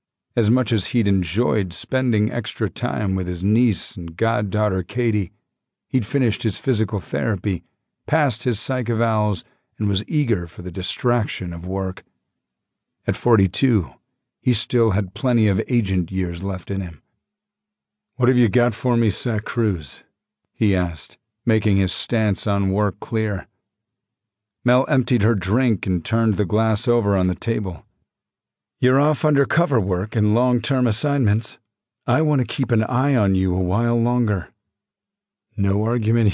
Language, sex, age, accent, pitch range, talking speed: English, male, 50-69, American, 100-120 Hz, 150 wpm